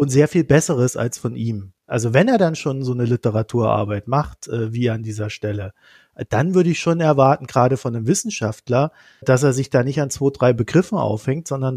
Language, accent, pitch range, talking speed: German, German, 120-150 Hz, 205 wpm